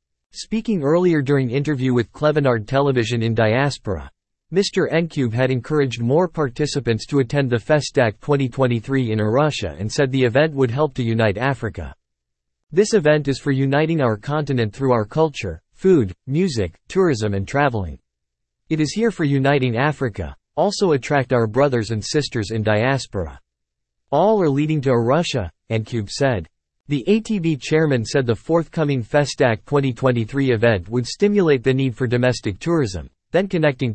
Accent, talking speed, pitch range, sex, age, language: American, 150 wpm, 110-150 Hz, male, 50-69, English